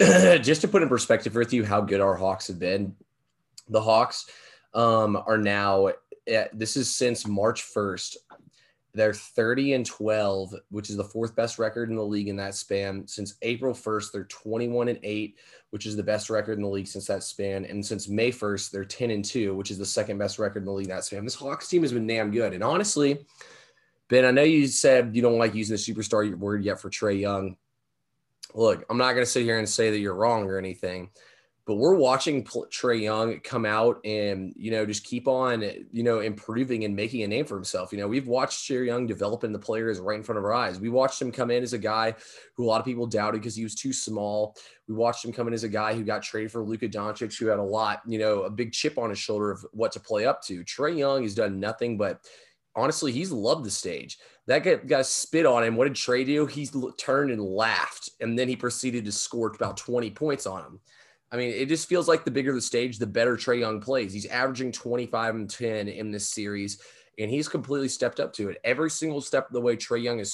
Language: English